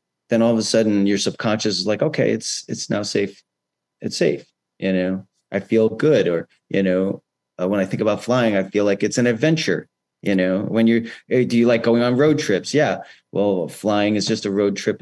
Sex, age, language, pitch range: male, 30-49, English, 95-120 Hz